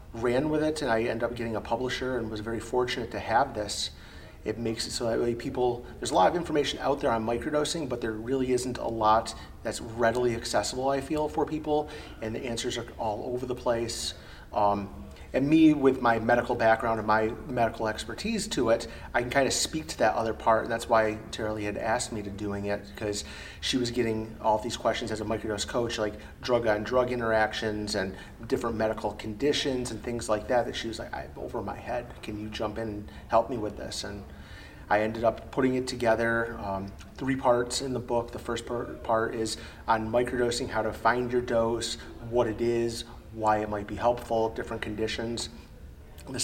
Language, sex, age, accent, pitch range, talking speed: English, male, 30-49, American, 110-120 Hz, 210 wpm